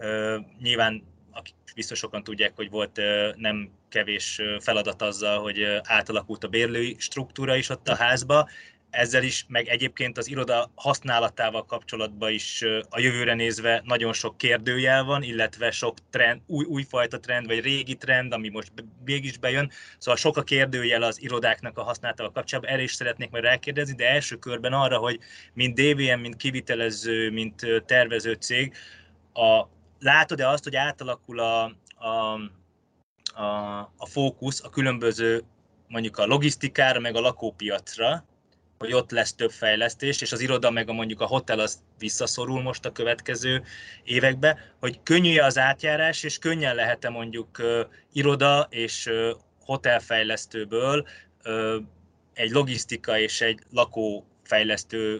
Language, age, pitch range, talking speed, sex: Hungarian, 20-39, 110-130 Hz, 145 wpm, male